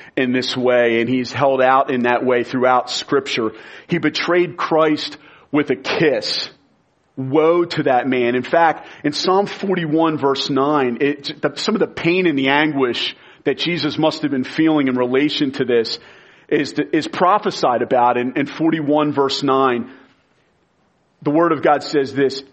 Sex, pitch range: male, 140-175 Hz